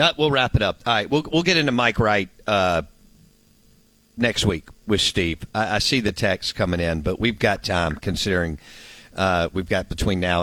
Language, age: English, 50-69